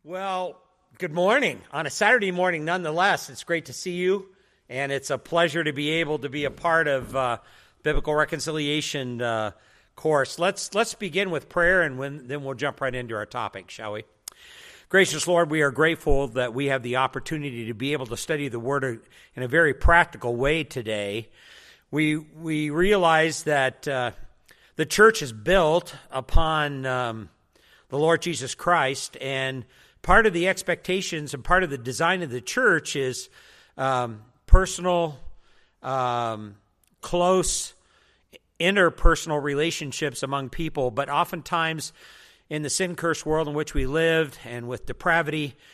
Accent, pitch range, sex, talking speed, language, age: American, 130-170 Hz, male, 155 wpm, English, 50-69